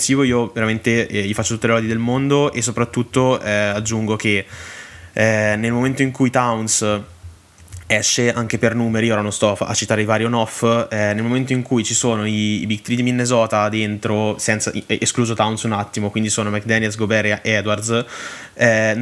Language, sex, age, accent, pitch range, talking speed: Italian, male, 20-39, native, 100-115 Hz, 185 wpm